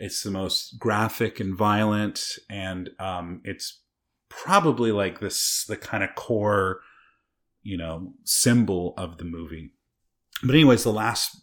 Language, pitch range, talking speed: English, 90-105 Hz, 135 wpm